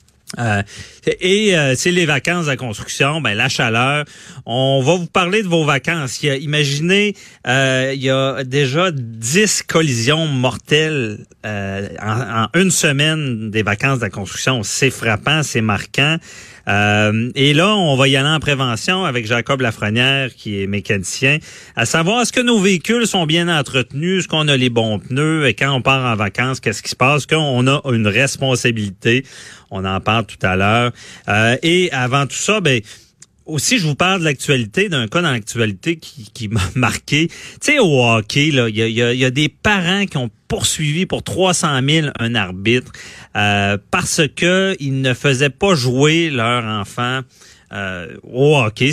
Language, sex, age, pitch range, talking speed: French, male, 40-59, 115-155 Hz, 180 wpm